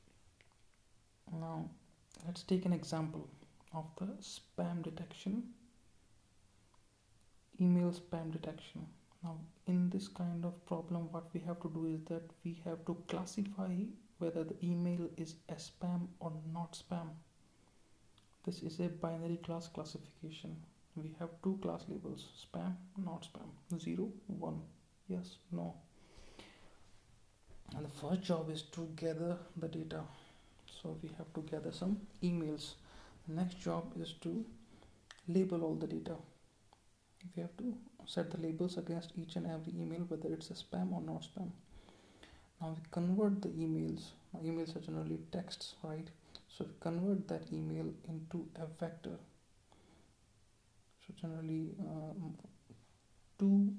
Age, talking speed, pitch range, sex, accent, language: 30-49, 135 wpm, 155-175 Hz, male, native, Hindi